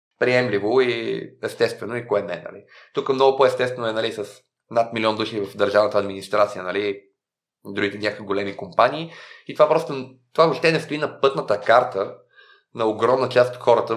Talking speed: 170 wpm